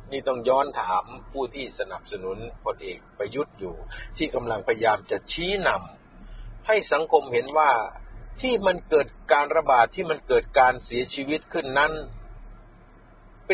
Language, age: Thai, 60-79